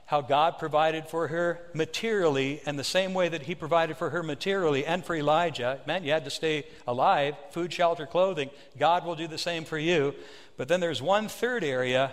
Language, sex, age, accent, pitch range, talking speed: English, male, 60-79, American, 150-180 Hz, 205 wpm